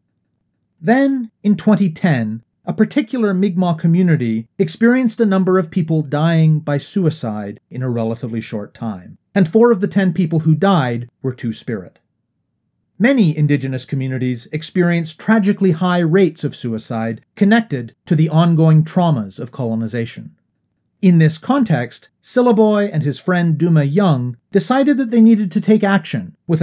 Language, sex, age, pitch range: English, male, 40-59, 125-190 Hz